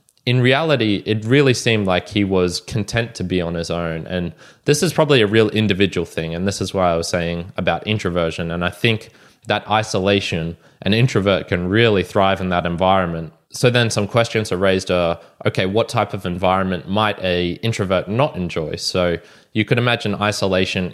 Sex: male